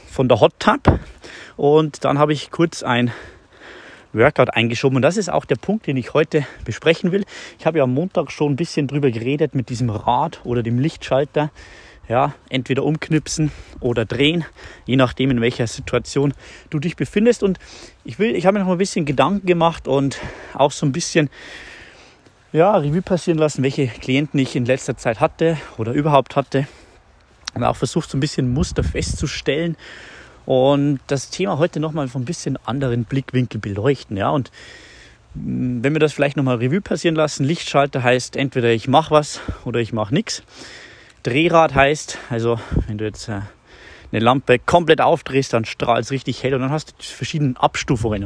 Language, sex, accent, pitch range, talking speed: German, male, German, 125-155 Hz, 175 wpm